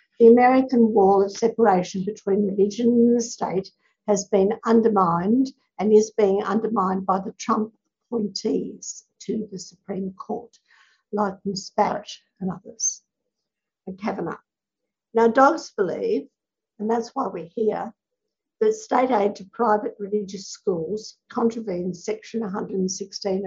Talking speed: 130 wpm